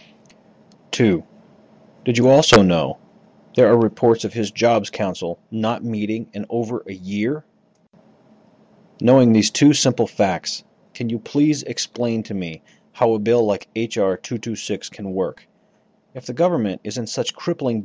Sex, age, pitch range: male, 30-49, 105-165 Hz